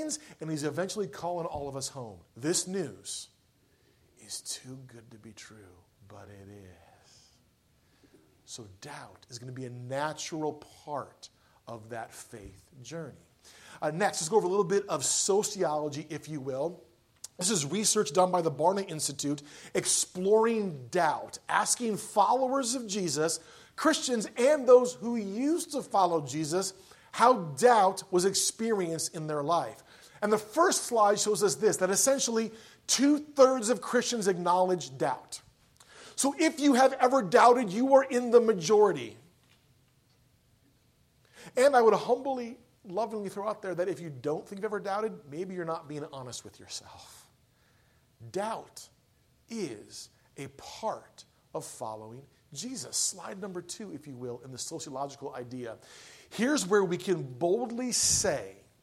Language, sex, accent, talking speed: English, male, American, 150 wpm